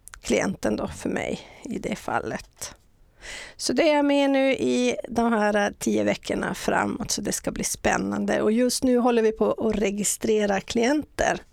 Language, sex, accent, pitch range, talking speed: English, female, Swedish, 190-250 Hz, 170 wpm